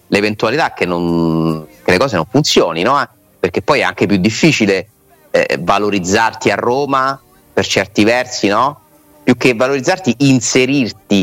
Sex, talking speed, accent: male, 145 wpm, native